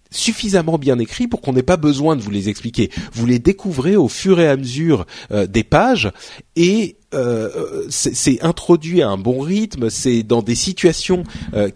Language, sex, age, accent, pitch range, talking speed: French, male, 40-59, French, 105-160 Hz, 190 wpm